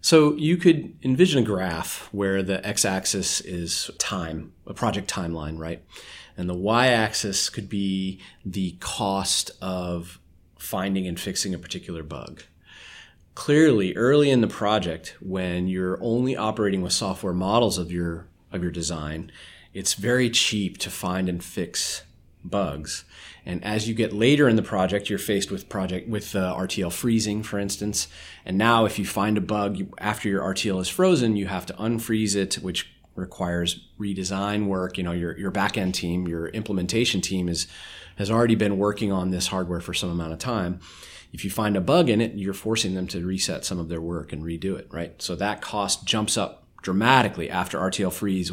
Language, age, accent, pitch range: English, 30-49, American, 85-105 Hz